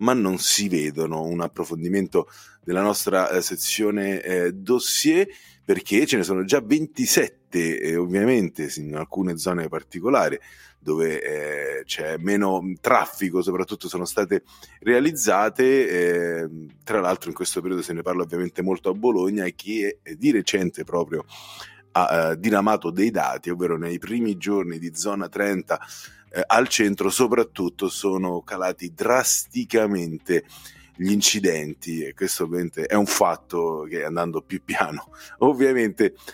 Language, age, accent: Italian, 30-49, native